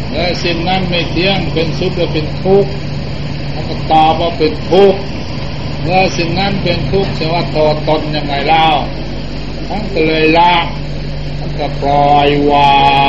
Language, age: Thai, 60-79